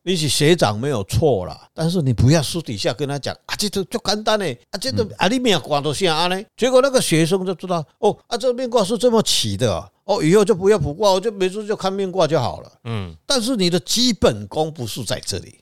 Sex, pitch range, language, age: male, 120-195 Hz, Chinese, 50-69